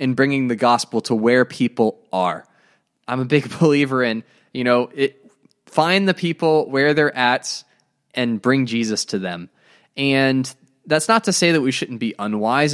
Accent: American